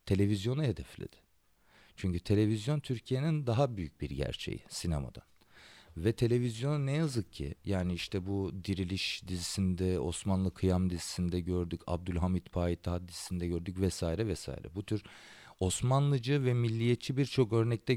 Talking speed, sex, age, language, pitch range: 125 wpm, male, 40-59, German, 90-125 Hz